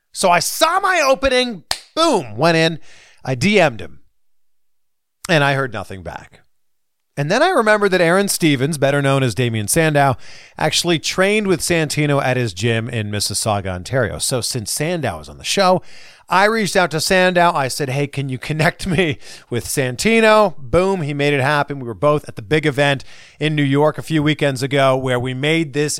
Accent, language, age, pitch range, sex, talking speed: American, English, 40-59, 125-180 Hz, male, 190 wpm